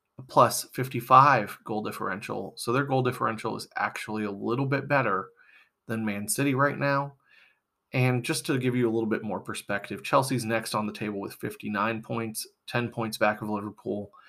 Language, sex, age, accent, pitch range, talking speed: English, male, 30-49, American, 110-135 Hz, 175 wpm